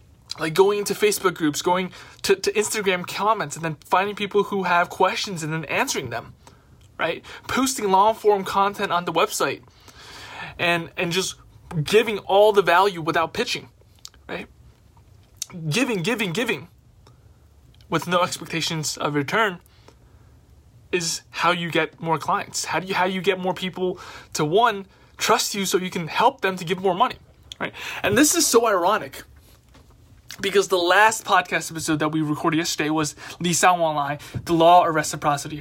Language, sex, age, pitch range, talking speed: English, male, 20-39, 160-200 Hz, 160 wpm